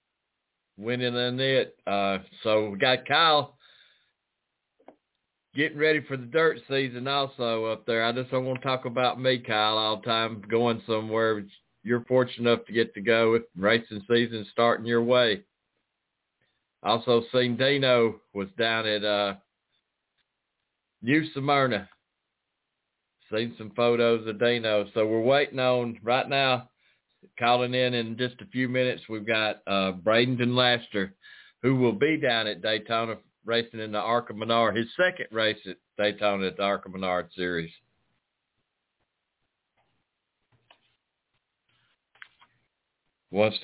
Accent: American